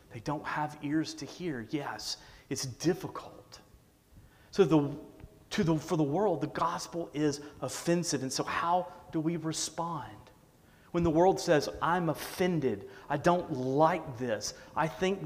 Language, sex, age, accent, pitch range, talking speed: English, male, 30-49, American, 130-165 Hz, 150 wpm